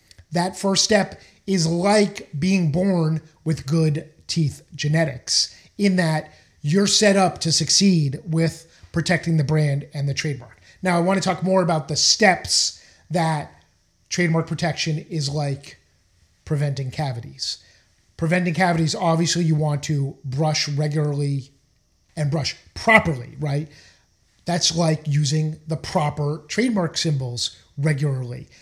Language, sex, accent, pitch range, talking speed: English, male, American, 145-175 Hz, 125 wpm